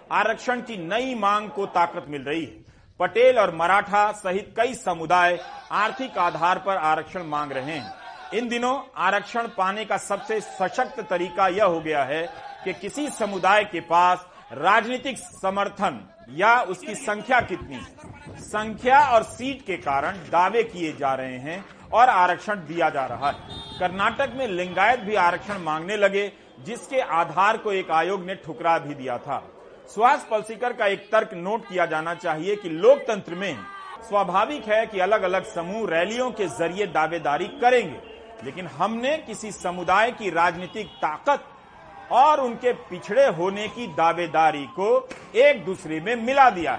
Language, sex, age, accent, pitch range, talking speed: Hindi, male, 40-59, native, 175-235 Hz, 155 wpm